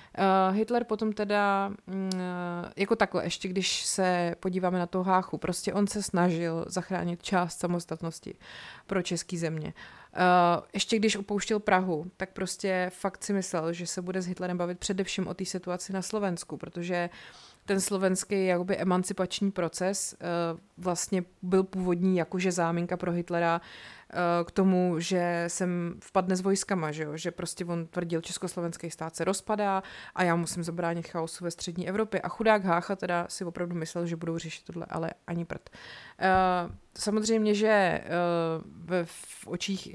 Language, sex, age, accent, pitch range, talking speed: Czech, female, 30-49, native, 165-185 Hz, 150 wpm